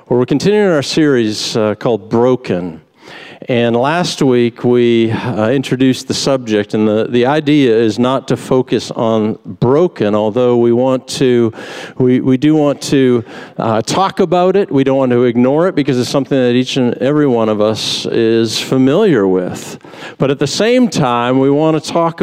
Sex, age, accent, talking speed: male, 50-69, American, 180 wpm